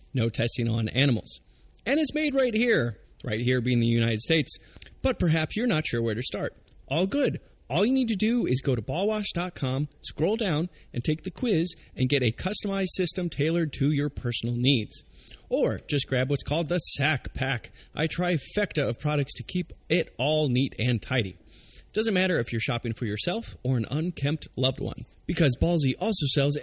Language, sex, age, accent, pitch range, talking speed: English, male, 30-49, American, 120-175 Hz, 195 wpm